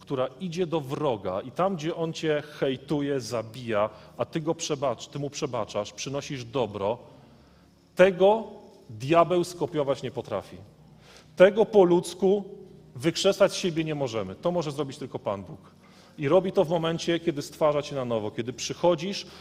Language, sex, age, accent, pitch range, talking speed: Polish, male, 40-59, native, 150-195 Hz, 155 wpm